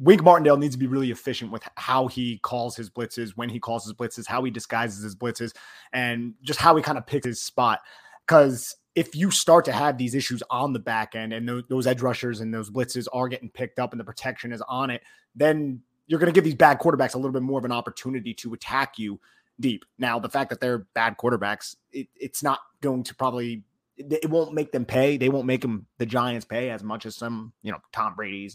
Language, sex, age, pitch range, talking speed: English, male, 30-49, 115-135 Hz, 235 wpm